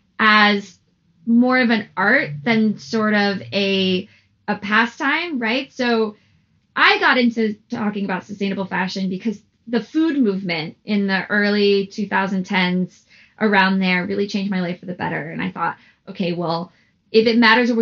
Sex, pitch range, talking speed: female, 190-230 Hz, 155 wpm